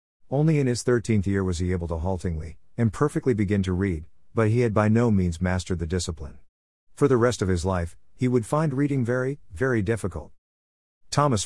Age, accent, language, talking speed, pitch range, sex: 50-69, American, English, 195 wpm, 90-120 Hz, male